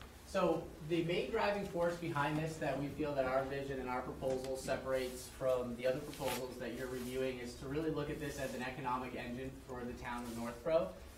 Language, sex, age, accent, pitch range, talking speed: English, male, 30-49, American, 125-145 Hz, 210 wpm